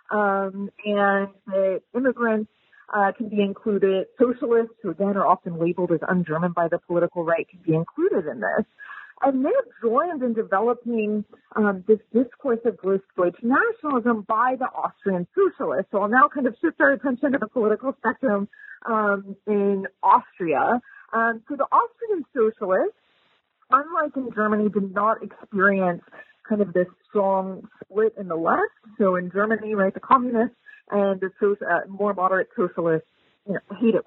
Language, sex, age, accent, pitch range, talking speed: English, female, 40-59, American, 190-245 Hz, 150 wpm